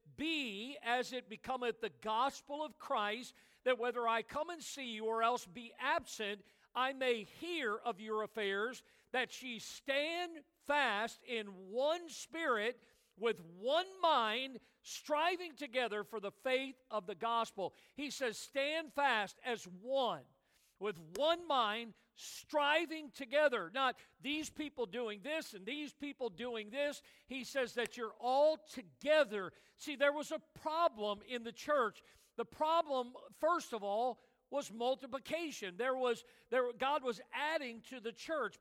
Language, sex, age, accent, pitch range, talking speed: English, male, 50-69, American, 230-295 Hz, 145 wpm